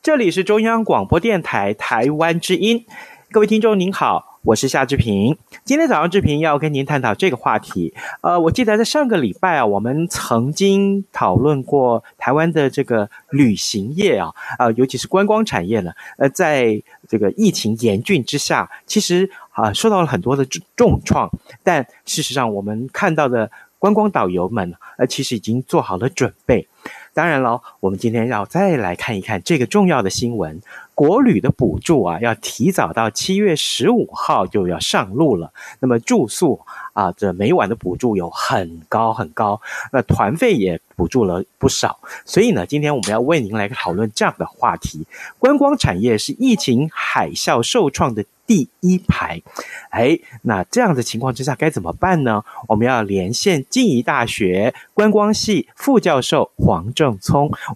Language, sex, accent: Chinese, male, native